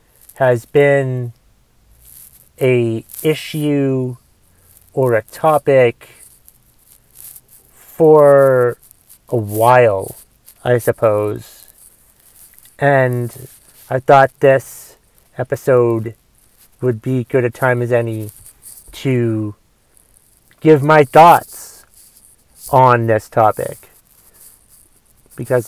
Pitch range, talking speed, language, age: 115-135 Hz, 75 wpm, English, 30-49